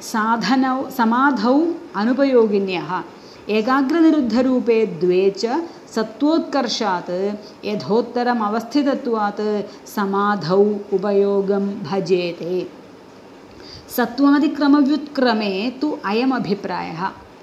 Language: Hindi